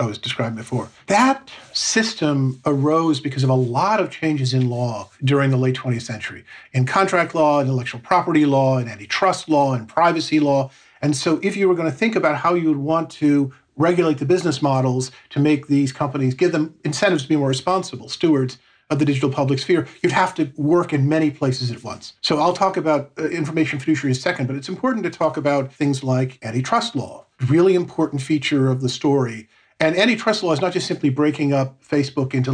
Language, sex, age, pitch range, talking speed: English, male, 50-69, 130-160 Hz, 210 wpm